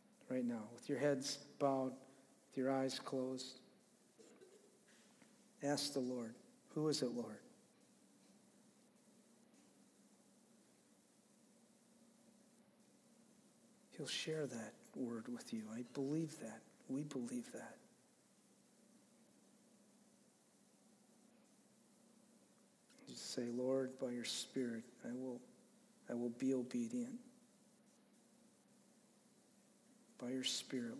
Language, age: English, 50-69